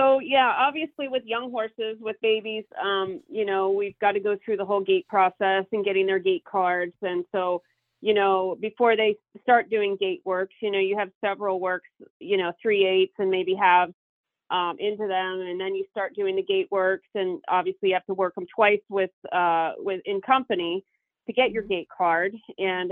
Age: 40-59